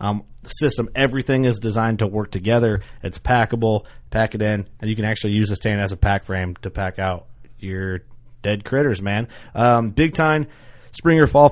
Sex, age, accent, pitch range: male, 30-49, American, 100-130 Hz